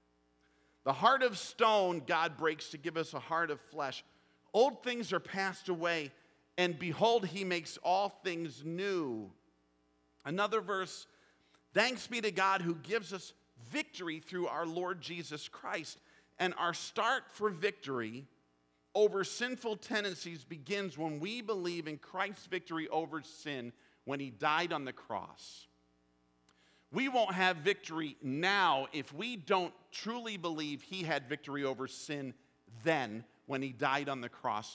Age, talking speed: 50-69, 145 wpm